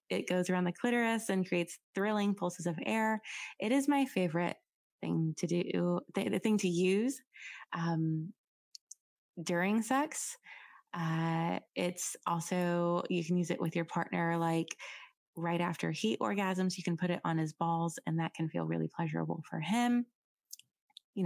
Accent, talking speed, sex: American, 160 wpm, female